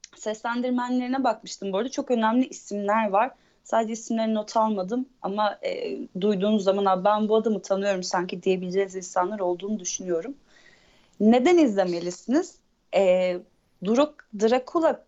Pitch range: 190-245 Hz